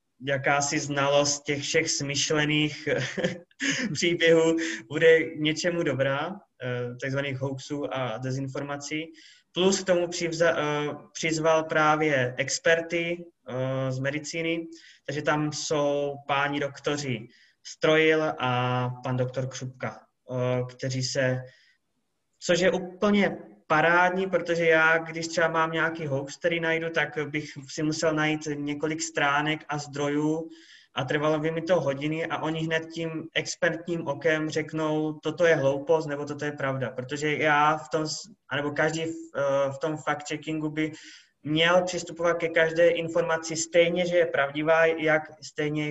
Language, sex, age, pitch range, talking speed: Czech, male, 20-39, 145-165 Hz, 125 wpm